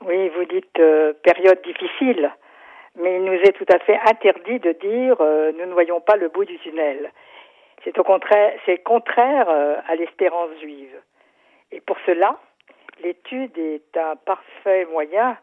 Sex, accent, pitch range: female, French, 170-245 Hz